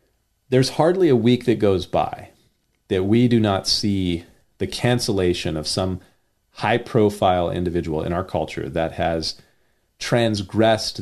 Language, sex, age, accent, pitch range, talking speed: English, male, 40-59, American, 90-115 Hz, 135 wpm